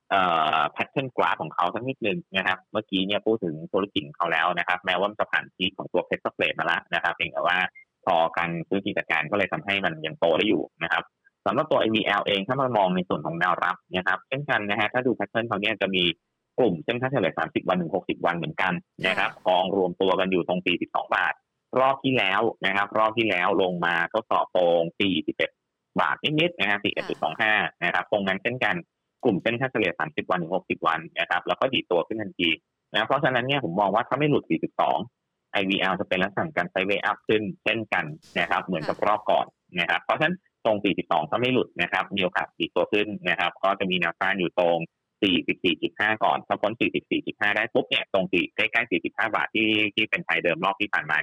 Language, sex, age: Thai, male, 30-49